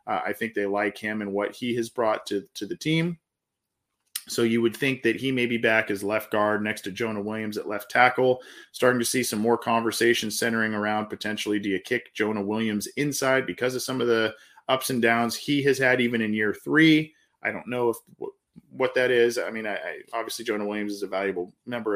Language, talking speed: English, 225 wpm